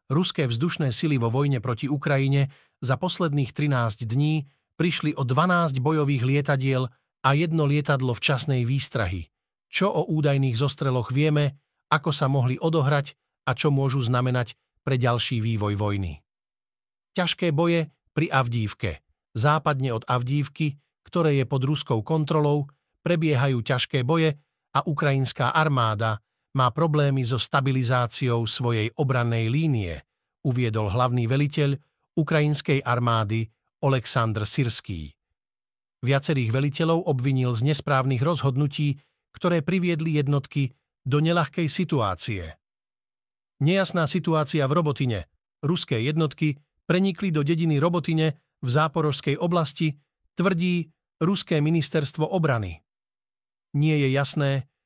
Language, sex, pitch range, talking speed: Slovak, male, 125-155 Hz, 110 wpm